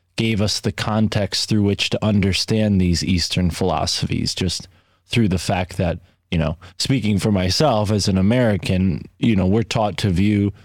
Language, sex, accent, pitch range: English, male, American, 95-115 Hz